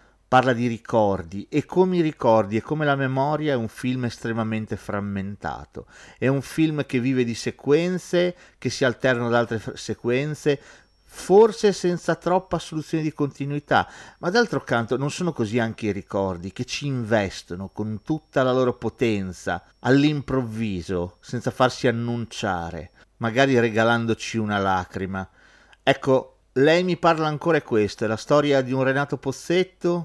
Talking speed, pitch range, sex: 145 wpm, 110-150 Hz, male